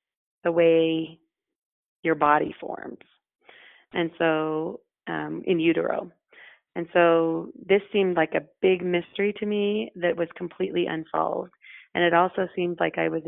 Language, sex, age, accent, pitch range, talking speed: English, female, 30-49, American, 160-180 Hz, 140 wpm